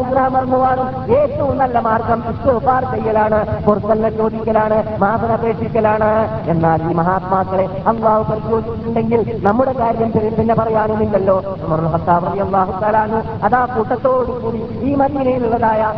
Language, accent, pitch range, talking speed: Malayalam, native, 215-230 Hz, 75 wpm